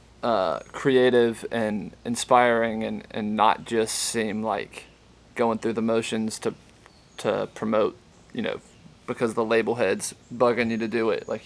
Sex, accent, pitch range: male, American, 110-125 Hz